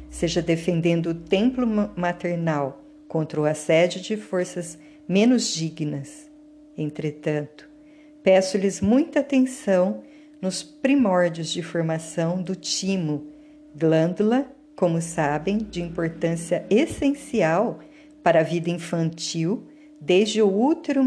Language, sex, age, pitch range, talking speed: Portuguese, female, 50-69, 155-225 Hz, 100 wpm